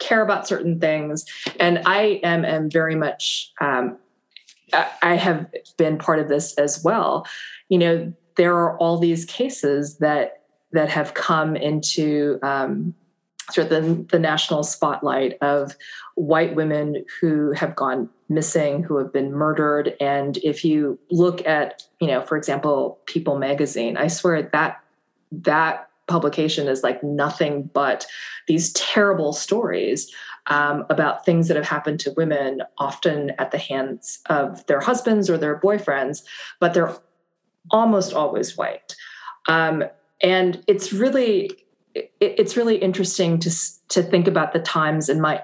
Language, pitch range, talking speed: English, 150-180 Hz, 145 wpm